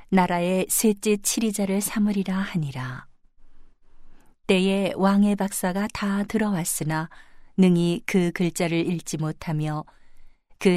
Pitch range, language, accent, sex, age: 160-195 Hz, Korean, native, female, 40-59